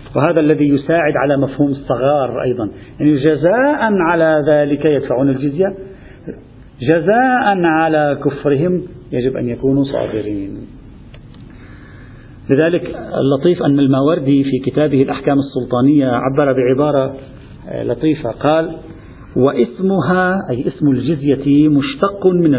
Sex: male